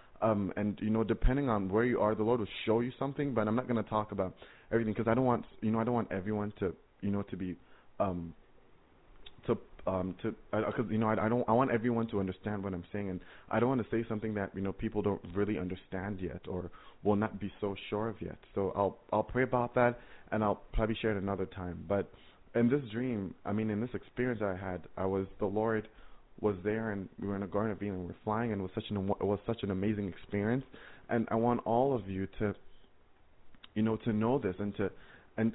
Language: English